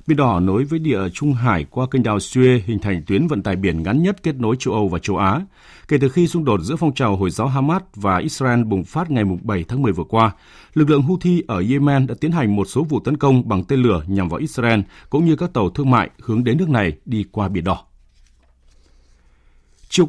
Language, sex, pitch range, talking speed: Vietnamese, male, 100-145 Hz, 240 wpm